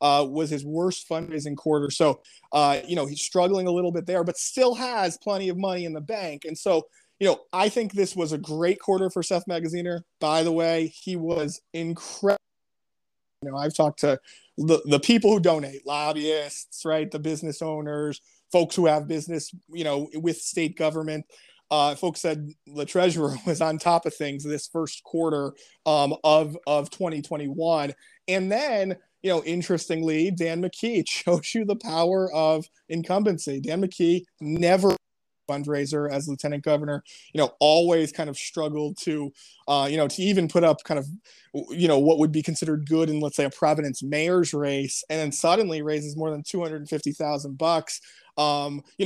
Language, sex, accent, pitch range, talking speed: English, male, American, 150-175 Hz, 185 wpm